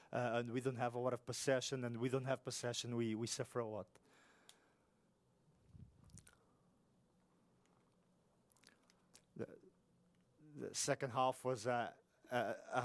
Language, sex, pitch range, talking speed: English, male, 120-130 Hz, 125 wpm